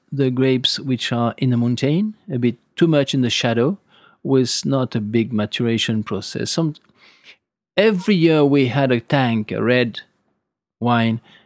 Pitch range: 110-135 Hz